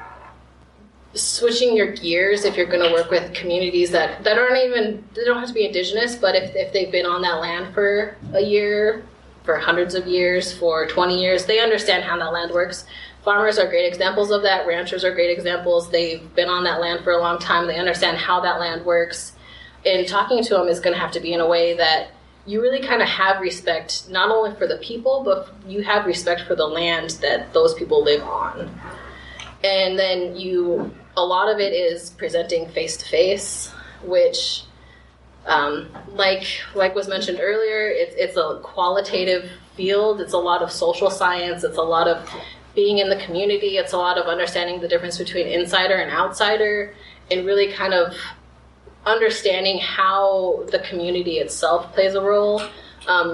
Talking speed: 185 wpm